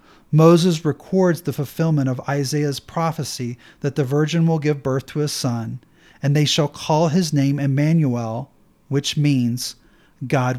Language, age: English, 40-59